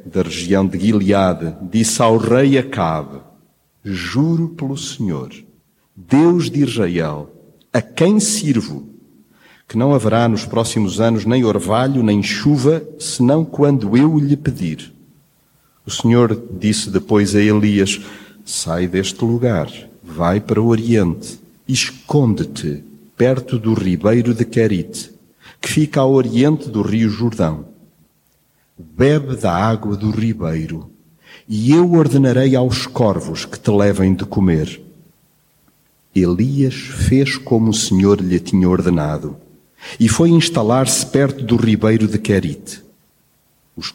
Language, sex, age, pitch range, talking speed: Portuguese, male, 50-69, 95-135 Hz, 125 wpm